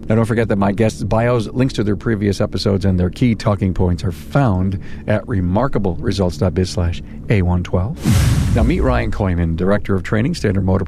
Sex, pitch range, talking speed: male, 95-120 Hz, 175 wpm